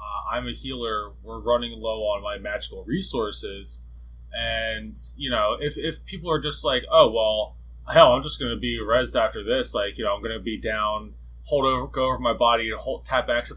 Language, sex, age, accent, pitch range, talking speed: English, male, 20-39, American, 105-155 Hz, 220 wpm